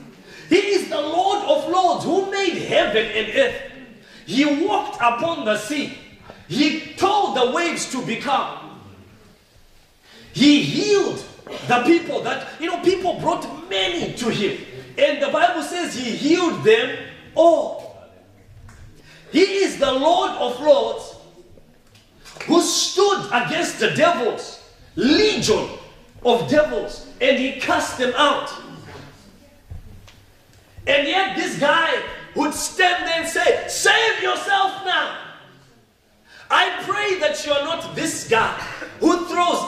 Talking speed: 125 wpm